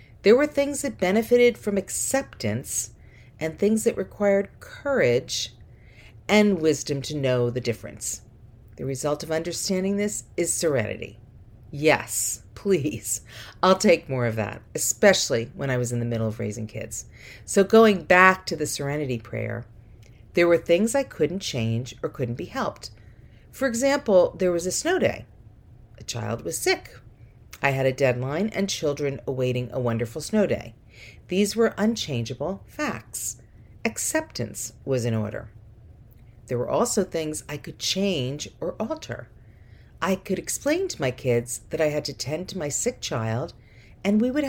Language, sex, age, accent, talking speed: English, female, 50-69, American, 155 wpm